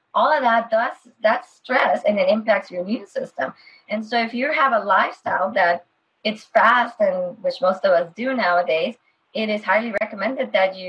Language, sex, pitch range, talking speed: English, female, 190-250 Hz, 185 wpm